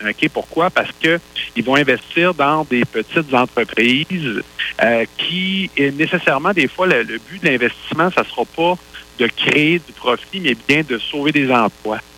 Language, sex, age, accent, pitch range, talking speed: French, male, 50-69, Canadian, 115-165 Hz, 170 wpm